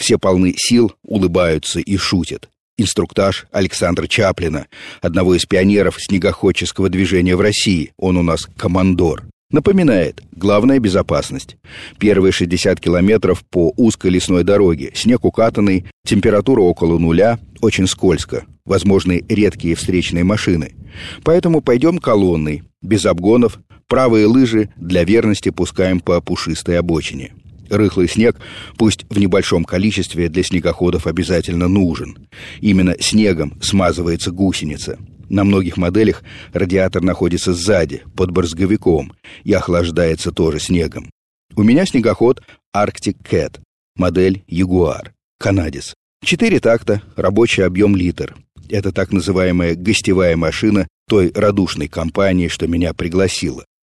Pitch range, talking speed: 85-105 Hz, 115 wpm